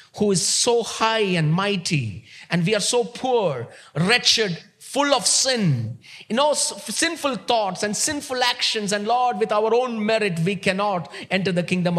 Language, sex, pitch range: English, male, 155-215 Hz